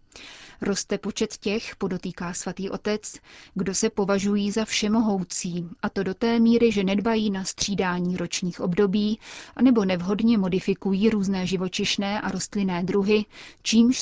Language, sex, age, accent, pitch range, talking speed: Czech, female, 30-49, native, 190-215 Hz, 135 wpm